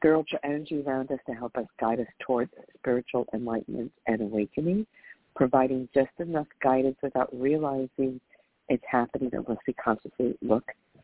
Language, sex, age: English, female, 50-69